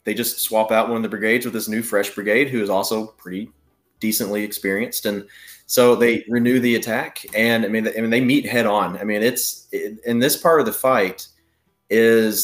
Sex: male